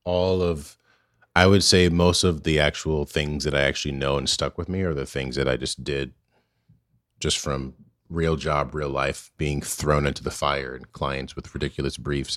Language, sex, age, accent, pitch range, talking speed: English, male, 30-49, American, 75-90 Hz, 200 wpm